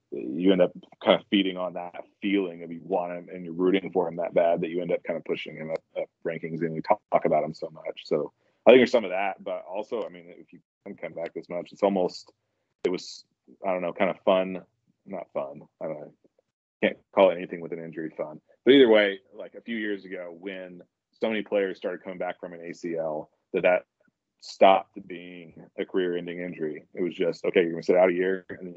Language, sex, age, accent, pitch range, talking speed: English, male, 30-49, American, 85-95 Hz, 240 wpm